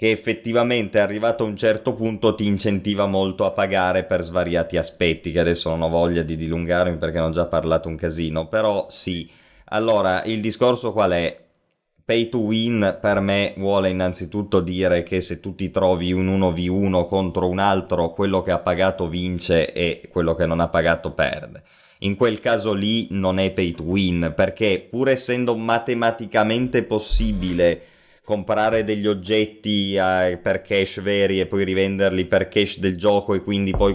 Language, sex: Italian, male